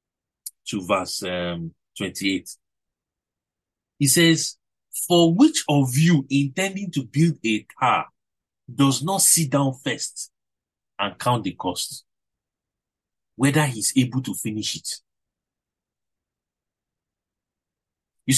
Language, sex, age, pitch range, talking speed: English, male, 50-69, 120-165 Hz, 100 wpm